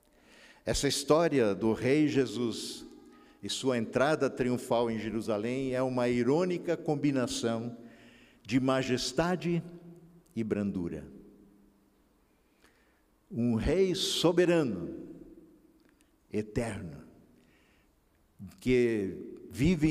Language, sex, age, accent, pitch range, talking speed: Portuguese, male, 60-79, Brazilian, 115-170 Hz, 75 wpm